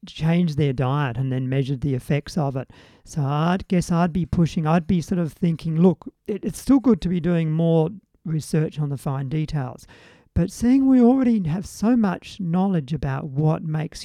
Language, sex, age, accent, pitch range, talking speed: English, male, 50-69, Australian, 145-180 Hz, 200 wpm